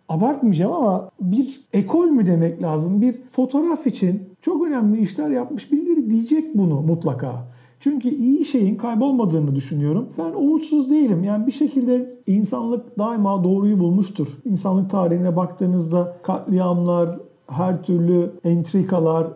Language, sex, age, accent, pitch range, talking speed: Turkish, male, 50-69, native, 175-235 Hz, 125 wpm